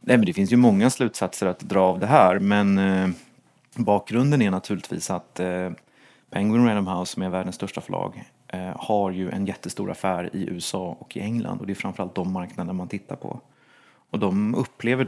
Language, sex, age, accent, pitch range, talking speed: Swedish, male, 30-49, native, 95-110 Hz, 180 wpm